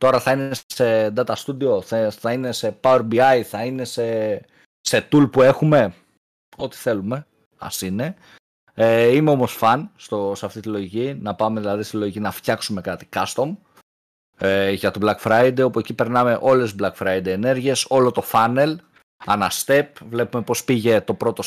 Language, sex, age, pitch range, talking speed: Greek, male, 30-49, 115-150 Hz, 175 wpm